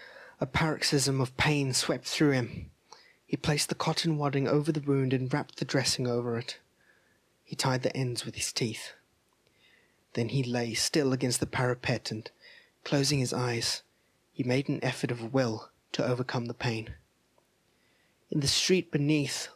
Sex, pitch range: male, 125-150 Hz